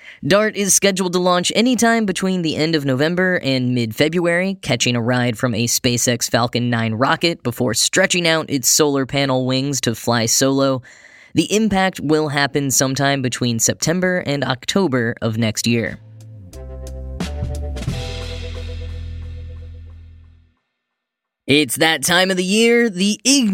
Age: 10-29